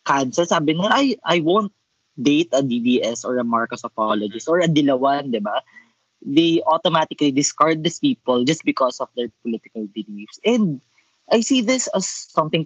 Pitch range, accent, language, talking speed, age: 130-190 Hz, native, Filipino, 165 wpm, 20-39